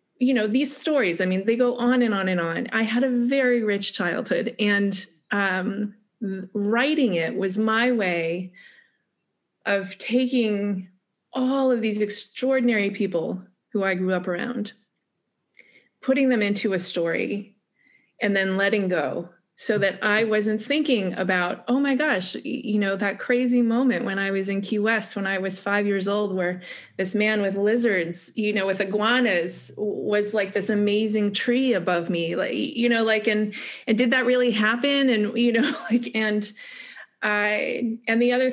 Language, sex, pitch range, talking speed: English, female, 195-245 Hz, 170 wpm